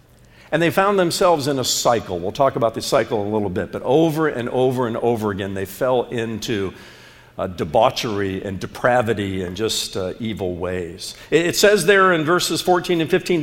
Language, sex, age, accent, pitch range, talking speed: English, male, 50-69, American, 110-165 Hz, 190 wpm